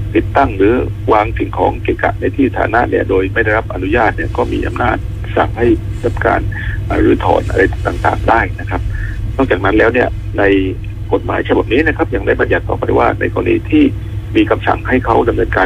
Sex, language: male, Thai